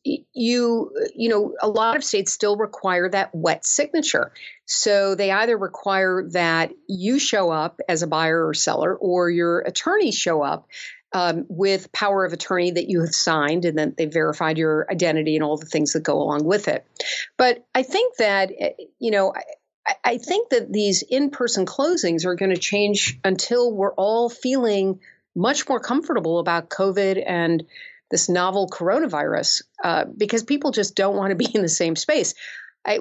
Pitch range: 175-240 Hz